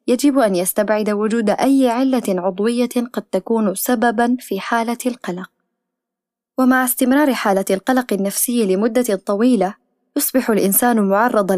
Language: Arabic